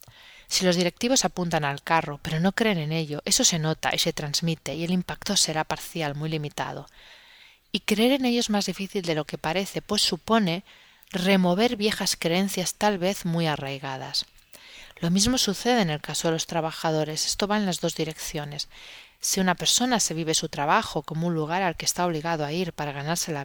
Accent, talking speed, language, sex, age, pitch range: Spanish, 200 wpm, Spanish, female, 30-49, 155-195 Hz